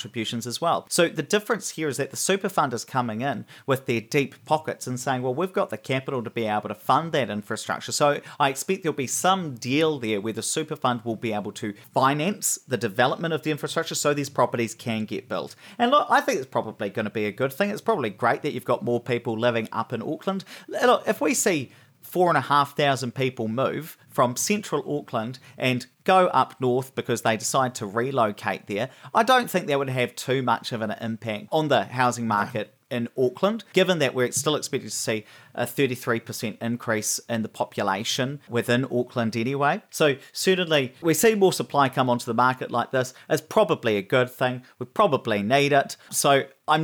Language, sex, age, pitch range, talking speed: English, male, 40-59, 115-150 Hz, 210 wpm